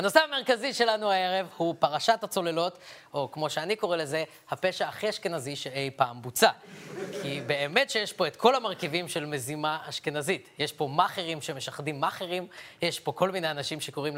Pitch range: 170-255 Hz